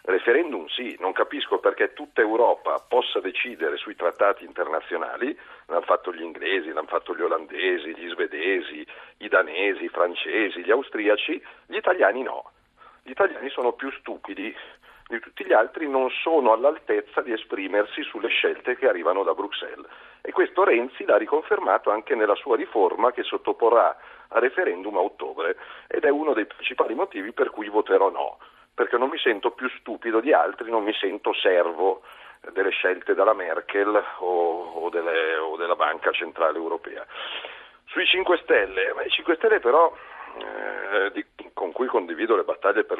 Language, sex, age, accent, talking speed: Italian, male, 40-59, native, 160 wpm